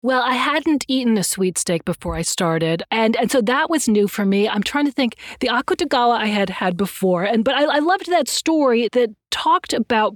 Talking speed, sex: 225 wpm, female